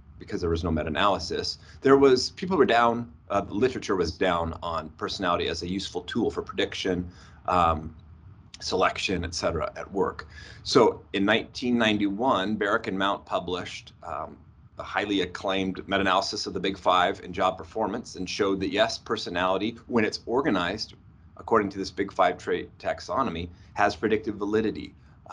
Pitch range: 90-110 Hz